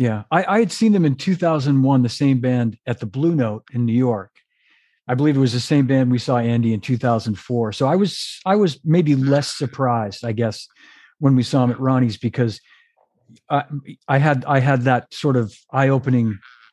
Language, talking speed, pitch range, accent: English, 200 wpm, 120-140 Hz, American